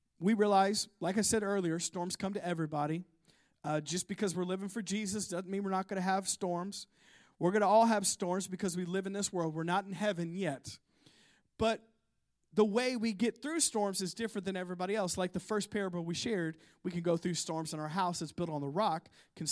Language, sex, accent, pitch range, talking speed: English, male, American, 170-215 Hz, 230 wpm